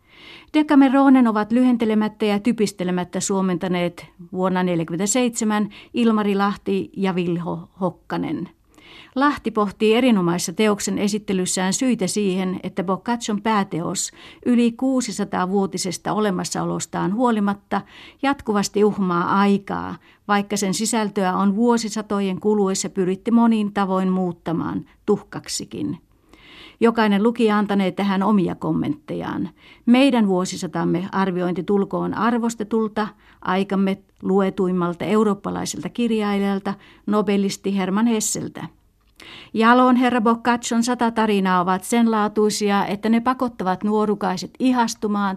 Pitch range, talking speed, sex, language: 190-225 Hz, 95 wpm, female, Italian